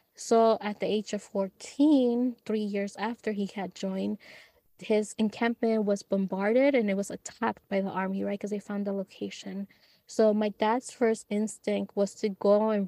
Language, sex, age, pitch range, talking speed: English, female, 20-39, 195-215 Hz, 175 wpm